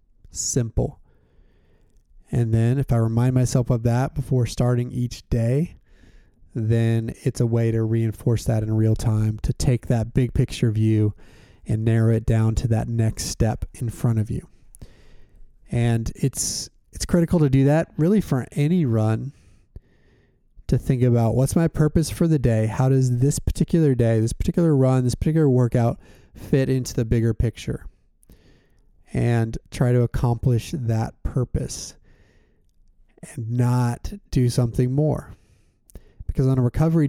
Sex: male